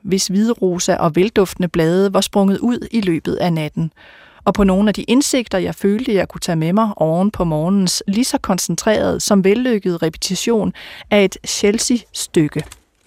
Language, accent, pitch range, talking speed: Danish, native, 180-230 Hz, 175 wpm